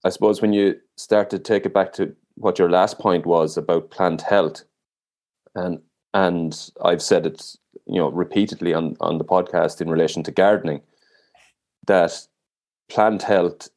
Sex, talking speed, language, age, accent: male, 160 wpm, English, 30-49, Irish